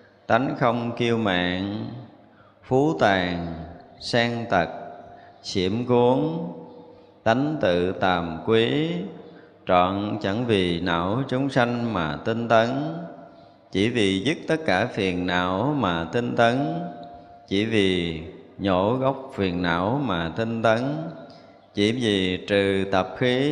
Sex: male